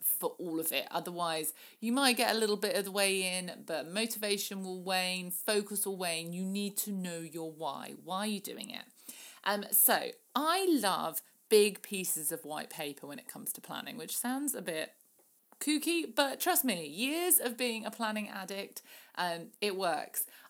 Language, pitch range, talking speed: English, 180-245 Hz, 185 wpm